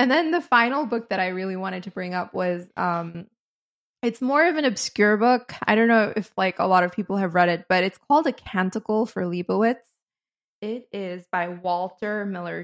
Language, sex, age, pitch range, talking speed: English, female, 20-39, 180-215 Hz, 210 wpm